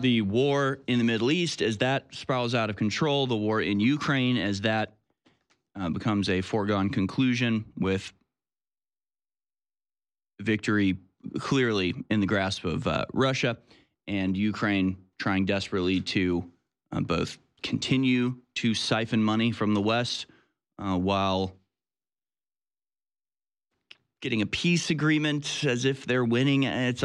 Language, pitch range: English, 100-125 Hz